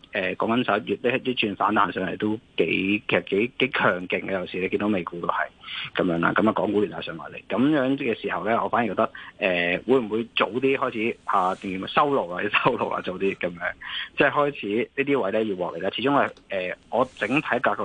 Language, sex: Chinese, male